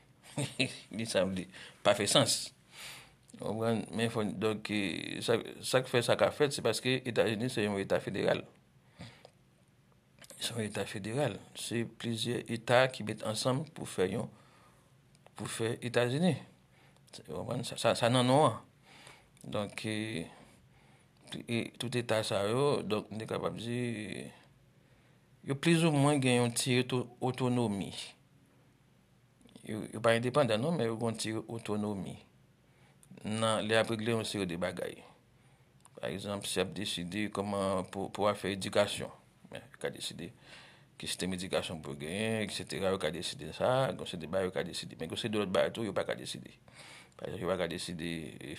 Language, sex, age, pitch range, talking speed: English, male, 60-79, 95-120 Hz, 145 wpm